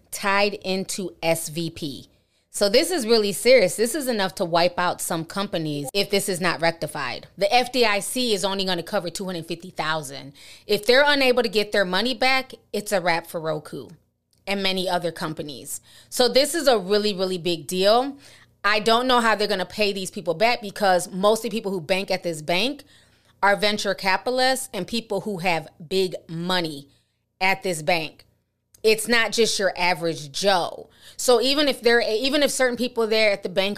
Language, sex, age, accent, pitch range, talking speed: English, female, 20-39, American, 175-230 Hz, 185 wpm